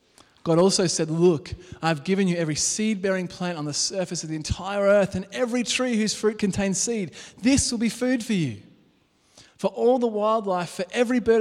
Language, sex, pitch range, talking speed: English, male, 120-175 Hz, 195 wpm